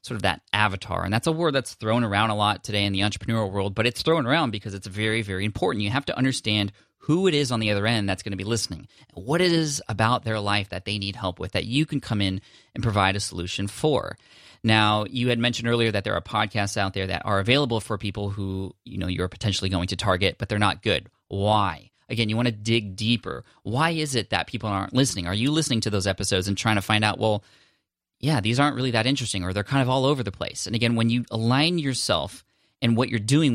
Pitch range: 100-125 Hz